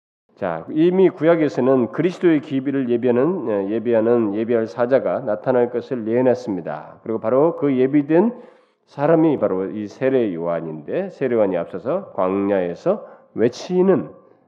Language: Korean